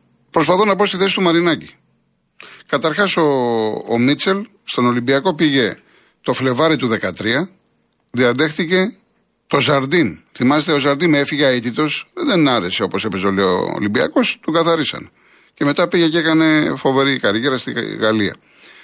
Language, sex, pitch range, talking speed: Greek, male, 115-160 Hz, 140 wpm